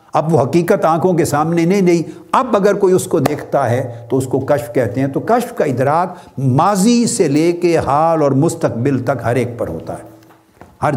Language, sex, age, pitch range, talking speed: Urdu, male, 60-79, 120-175 Hz, 215 wpm